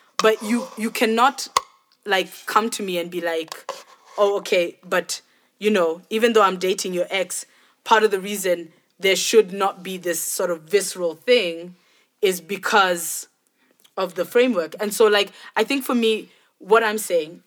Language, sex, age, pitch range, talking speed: English, female, 20-39, 180-225 Hz, 170 wpm